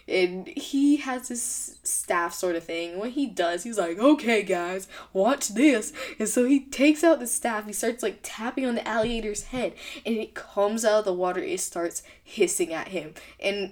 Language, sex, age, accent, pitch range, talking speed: English, female, 10-29, American, 215-315 Hz, 195 wpm